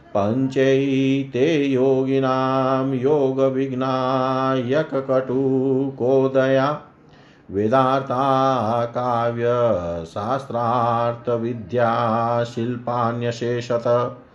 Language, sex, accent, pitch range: Hindi, male, native, 120-135 Hz